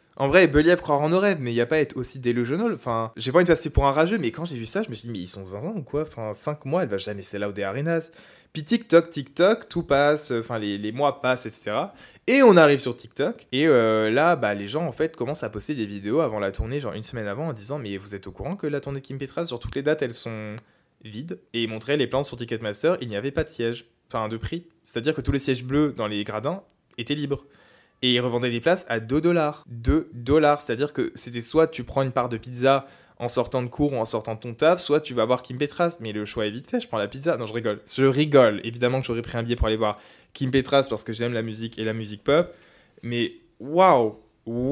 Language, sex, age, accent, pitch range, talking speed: French, male, 20-39, French, 115-145 Hz, 275 wpm